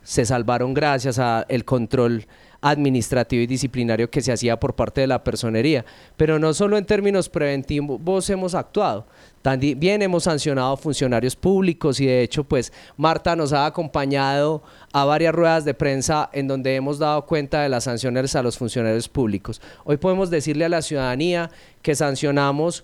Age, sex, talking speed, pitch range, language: 30-49, male, 165 wpm, 135-170 Hz, Spanish